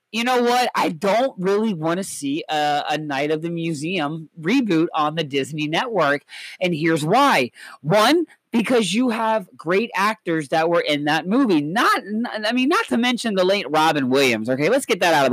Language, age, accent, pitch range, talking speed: English, 40-59, American, 175-245 Hz, 200 wpm